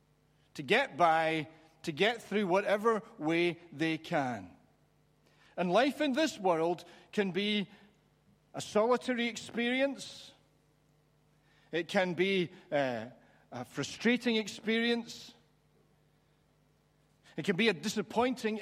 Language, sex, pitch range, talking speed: English, male, 150-205 Hz, 105 wpm